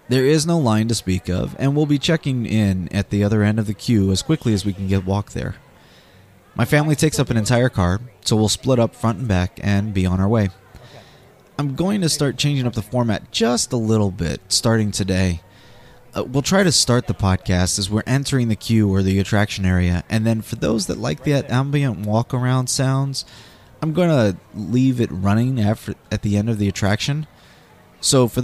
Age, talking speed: 20-39, 215 wpm